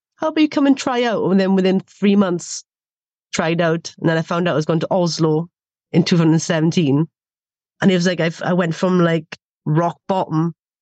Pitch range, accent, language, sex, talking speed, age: 165-195 Hz, British, English, female, 200 wpm, 30-49